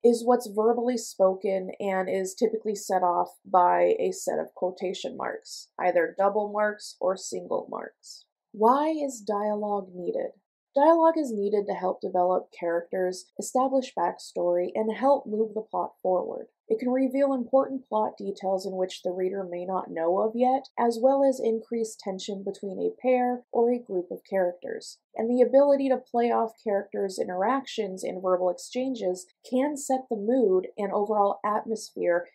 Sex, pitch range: female, 185-245 Hz